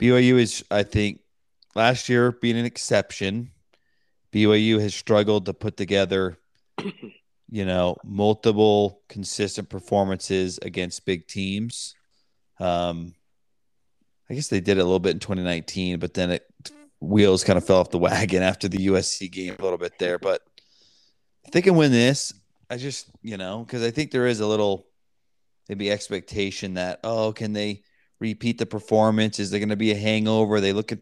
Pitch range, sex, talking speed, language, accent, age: 95-120 Hz, male, 170 wpm, English, American, 30-49